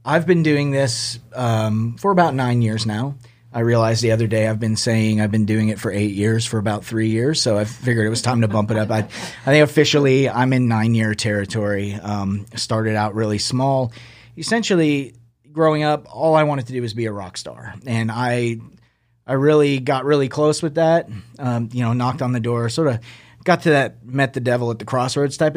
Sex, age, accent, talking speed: male, 30-49, American, 220 wpm